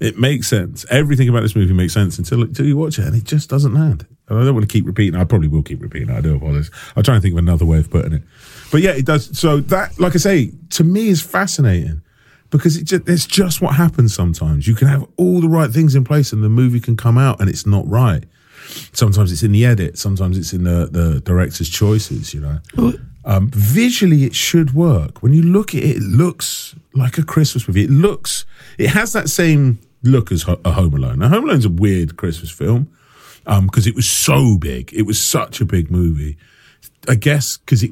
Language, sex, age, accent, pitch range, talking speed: English, male, 40-59, British, 85-130 Hz, 240 wpm